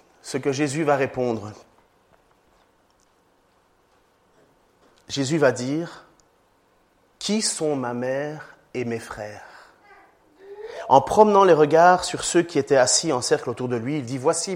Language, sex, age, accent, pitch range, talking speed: French, male, 30-49, French, 125-175 Hz, 130 wpm